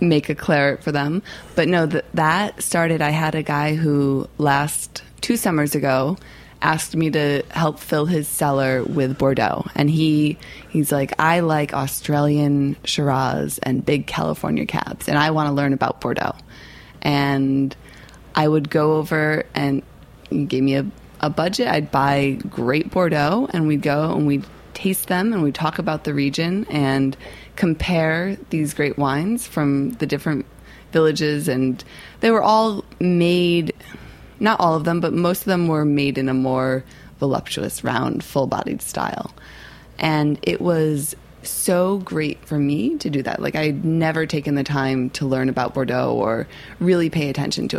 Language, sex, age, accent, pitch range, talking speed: English, female, 20-39, American, 140-165 Hz, 165 wpm